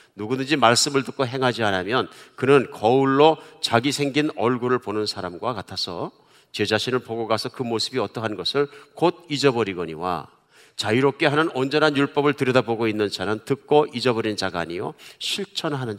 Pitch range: 110-145 Hz